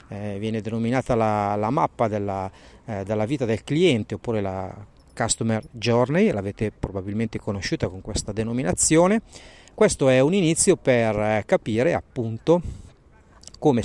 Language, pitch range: Italian, 105-130 Hz